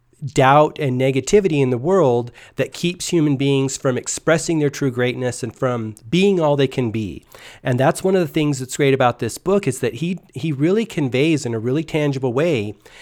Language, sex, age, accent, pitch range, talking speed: English, male, 40-59, American, 125-150 Hz, 205 wpm